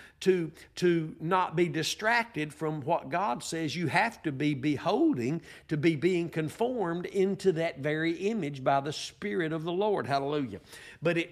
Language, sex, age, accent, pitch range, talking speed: English, male, 60-79, American, 155-210 Hz, 165 wpm